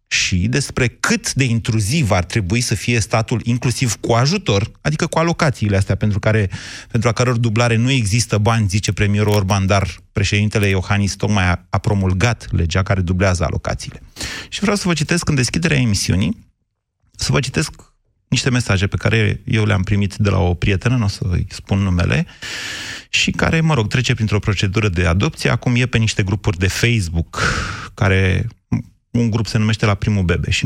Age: 30-49